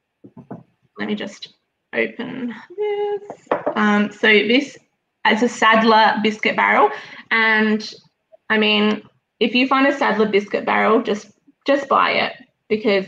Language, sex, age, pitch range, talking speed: English, female, 20-39, 200-235 Hz, 130 wpm